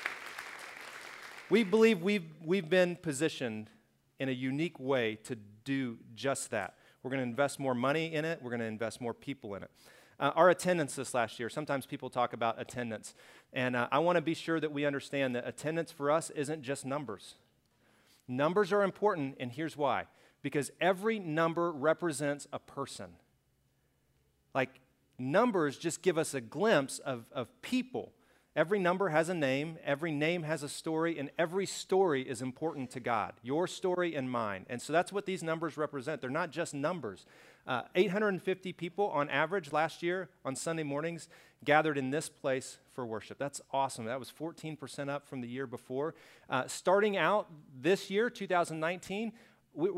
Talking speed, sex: 175 wpm, male